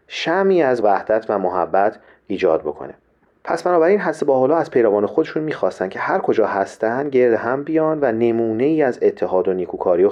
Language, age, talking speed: Persian, 40-59, 185 wpm